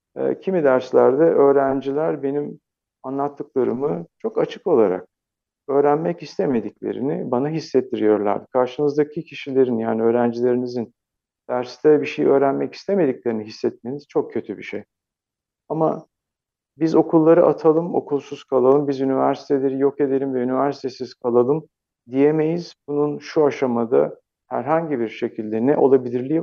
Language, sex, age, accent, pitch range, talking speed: Turkish, male, 50-69, native, 125-155 Hz, 110 wpm